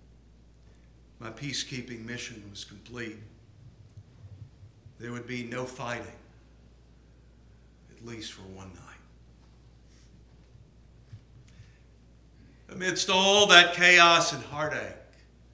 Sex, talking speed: male, 80 wpm